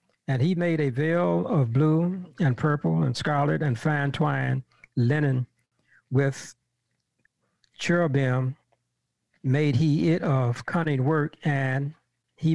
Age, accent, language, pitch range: 60-79, American, English, 130-170 Hz